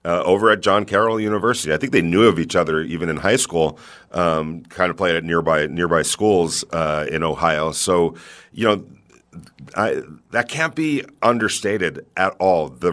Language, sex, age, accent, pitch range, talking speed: English, male, 40-59, American, 85-110 Hz, 180 wpm